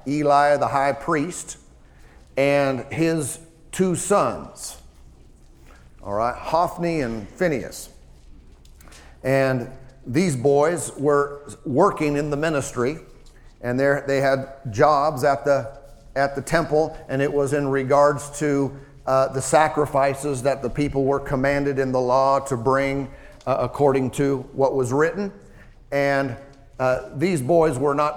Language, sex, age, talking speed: English, male, 50-69, 130 wpm